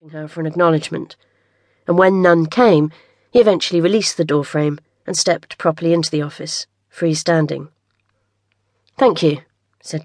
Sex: female